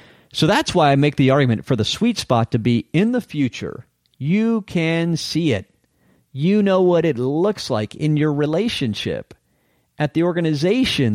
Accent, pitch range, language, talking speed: American, 115-150 Hz, English, 170 wpm